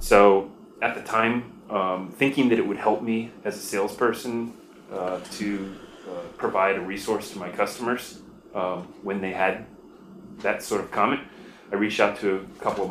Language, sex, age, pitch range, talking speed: English, male, 30-49, 95-105 Hz, 175 wpm